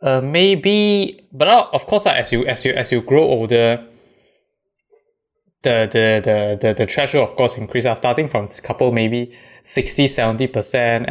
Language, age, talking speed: English, 20-39, 175 wpm